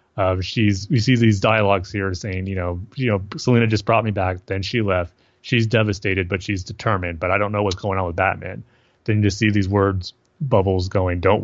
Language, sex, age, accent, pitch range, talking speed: English, male, 30-49, American, 95-120 Hz, 220 wpm